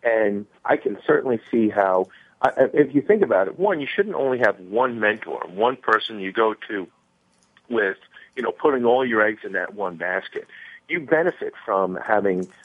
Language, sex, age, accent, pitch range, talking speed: English, male, 50-69, American, 100-120 Hz, 195 wpm